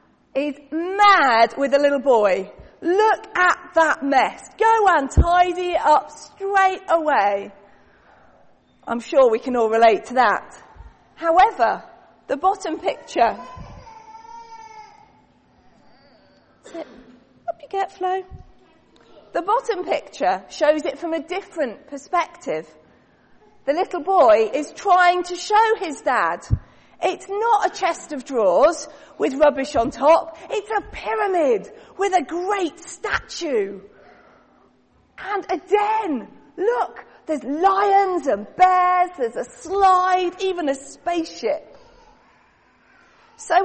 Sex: female